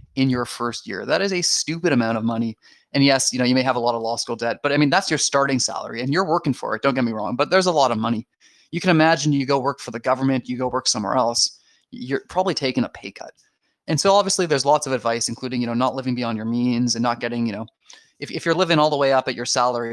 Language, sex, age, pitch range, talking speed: English, male, 20-39, 120-160 Hz, 290 wpm